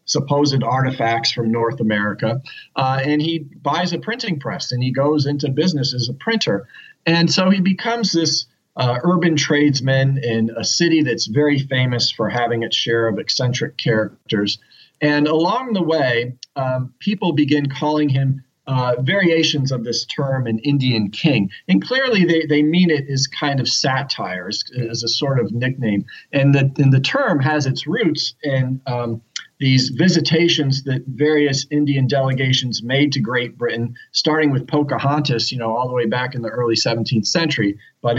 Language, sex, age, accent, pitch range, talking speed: English, male, 40-59, American, 120-150 Hz, 170 wpm